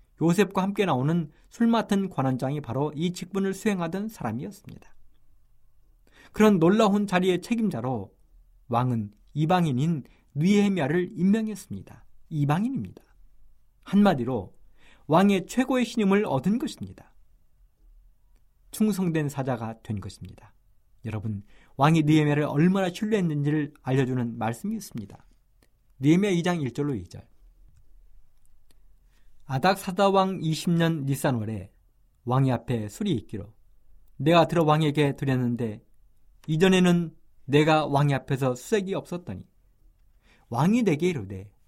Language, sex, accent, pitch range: Korean, male, native, 115-190 Hz